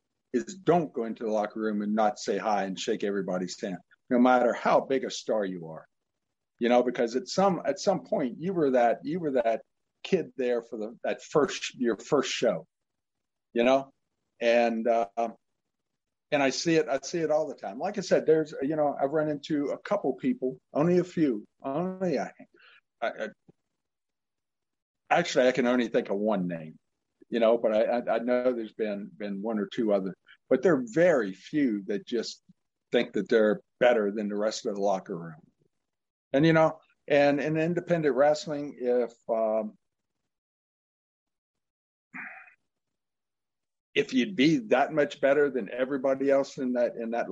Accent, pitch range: American, 110-150 Hz